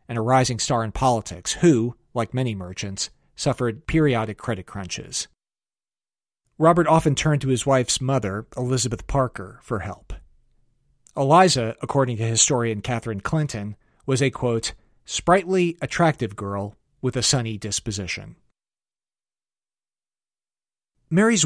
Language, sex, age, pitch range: English, male, 40-59, 110-135 Hz